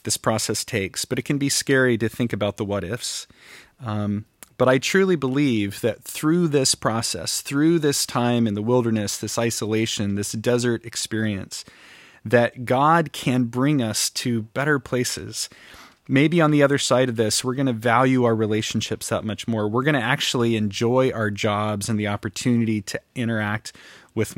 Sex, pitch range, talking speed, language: male, 110-130 Hz, 170 wpm, English